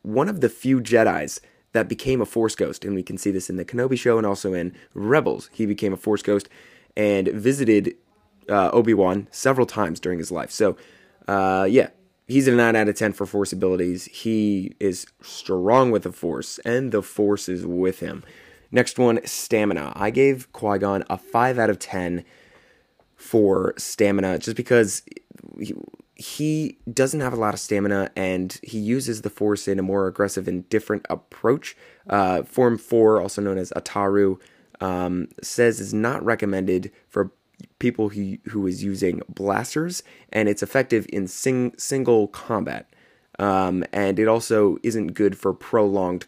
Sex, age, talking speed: male, 20-39, 165 wpm